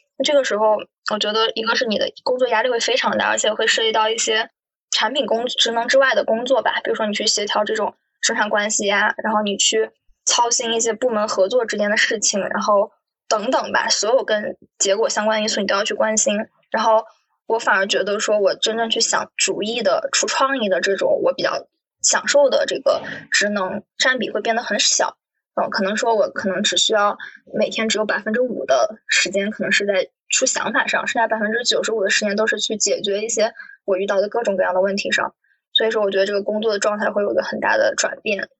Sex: female